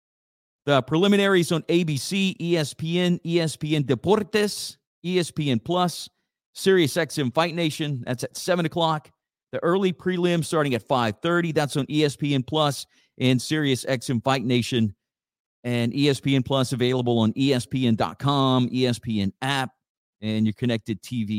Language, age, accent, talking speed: English, 50-69, American, 120 wpm